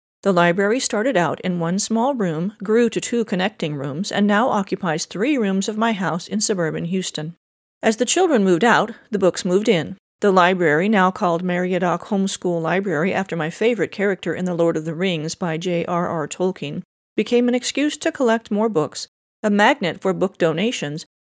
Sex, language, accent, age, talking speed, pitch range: female, English, American, 40-59, 185 wpm, 175-230 Hz